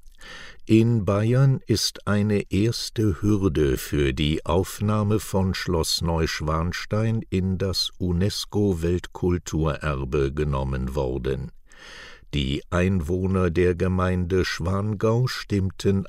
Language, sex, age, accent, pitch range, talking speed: English, male, 60-79, German, 80-105 Hz, 85 wpm